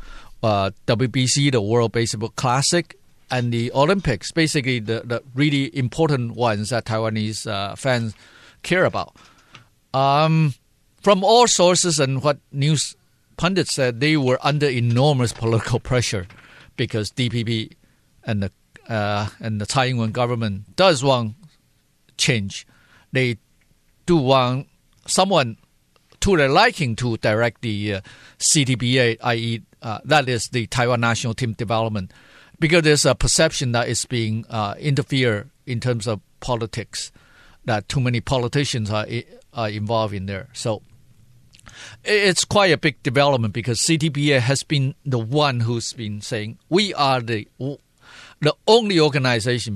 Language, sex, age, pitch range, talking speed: English, male, 50-69, 110-145 Hz, 135 wpm